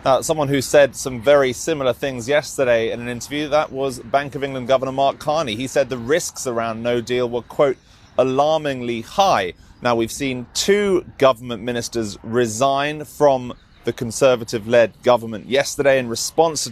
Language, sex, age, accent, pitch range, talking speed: English, male, 30-49, British, 125-150 Hz, 160 wpm